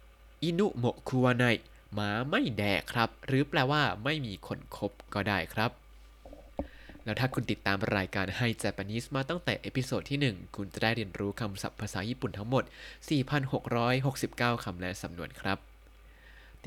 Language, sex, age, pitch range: Thai, male, 20-39, 100-130 Hz